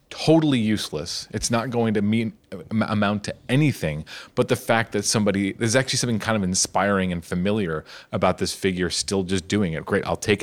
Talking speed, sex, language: 190 wpm, male, English